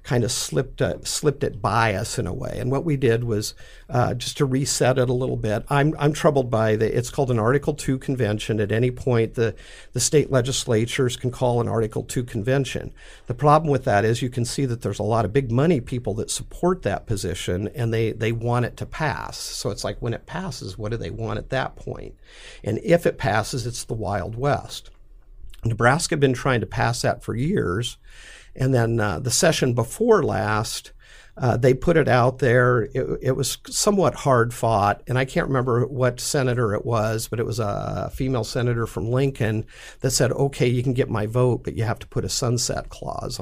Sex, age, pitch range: male, 50-69, 115-135 Hz